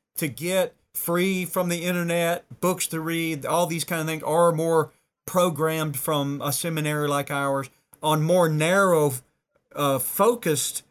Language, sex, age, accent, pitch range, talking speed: English, male, 40-59, American, 130-160 Hz, 150 wpm